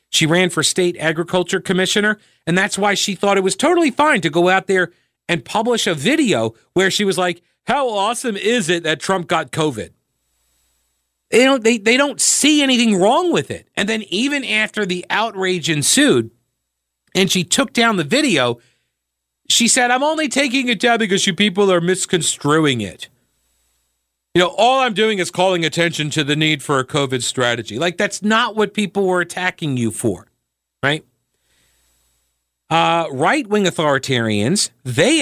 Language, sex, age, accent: English, male, 50-69, American